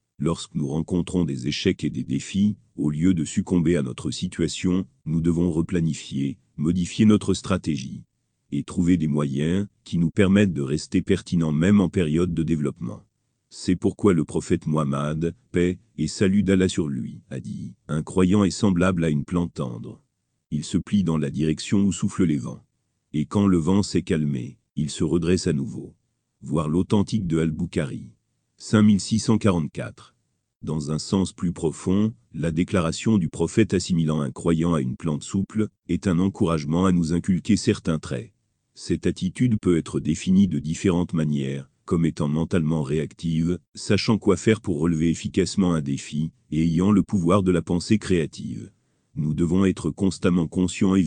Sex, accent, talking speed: male, French, 165 wpm